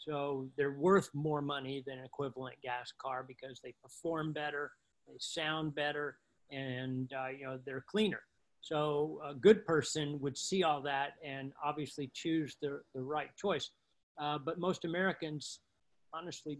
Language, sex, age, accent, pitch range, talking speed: English, male, 40-59, American, 145-185 Hz, 155 wpm